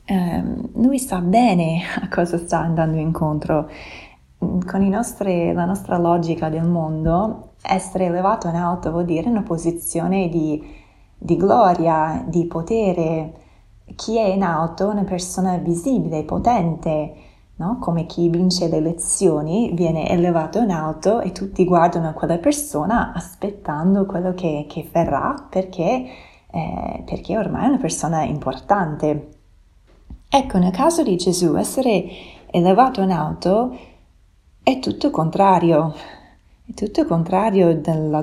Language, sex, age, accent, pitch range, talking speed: Italian, female, 20-39, native, 160-200 Hz, 130 wpm